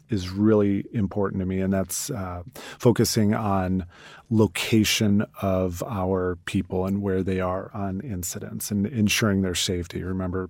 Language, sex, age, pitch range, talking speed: English, male, 30-49, 95-110 Hz, 145 wpm